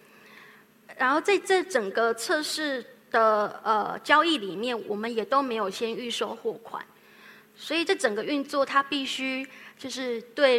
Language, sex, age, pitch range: Chinese, female, 20-39, 215-270 Hz